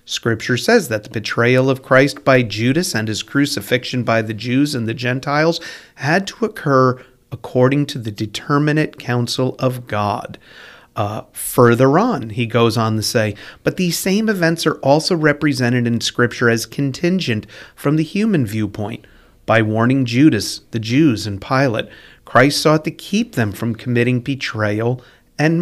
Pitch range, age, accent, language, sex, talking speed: 115-155 Hz, 40-59, American, English, male, 155 wpm